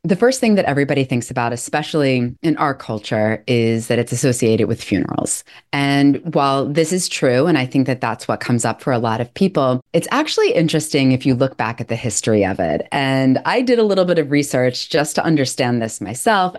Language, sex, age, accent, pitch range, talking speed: English, female, 30-49, American, 125-175 Hz, 215 wpm